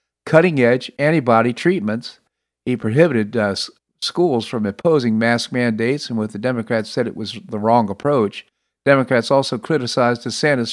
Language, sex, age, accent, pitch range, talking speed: English, male, 50-69, American, 110-140 Hz, 140 wpm